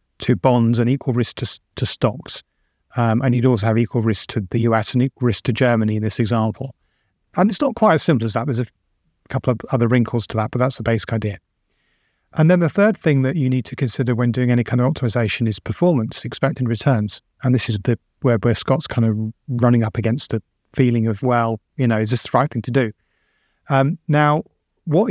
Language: English